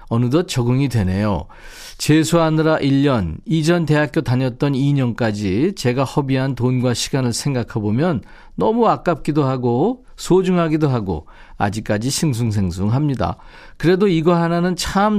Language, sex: Korean, male